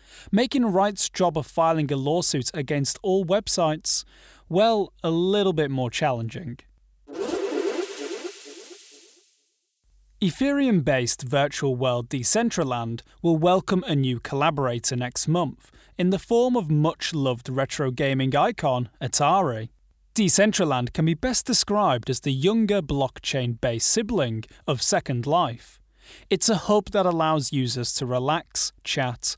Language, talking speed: English, 120 wpm